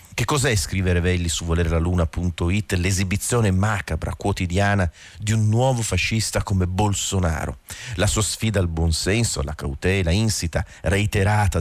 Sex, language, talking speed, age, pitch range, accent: male, Italian, 125 wpm, 40-59, 85-105 Hz, native